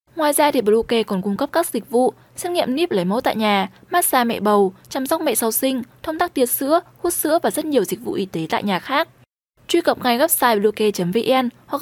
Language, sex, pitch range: Vietnamese, female, 215-290 Hz